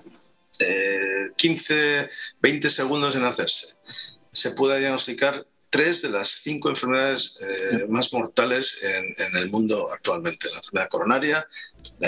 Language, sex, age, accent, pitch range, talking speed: Spanish, male, 50-69, Spanish, 100-135 Hz, 130 wpm